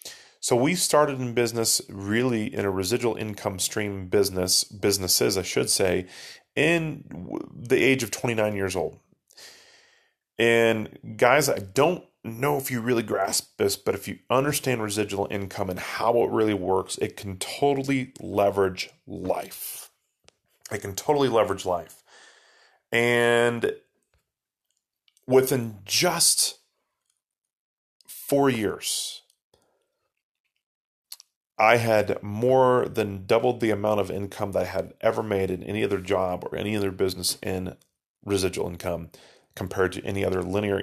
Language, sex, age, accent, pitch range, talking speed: English, male, 30-49, American, 95-125 Hz, 130 wpm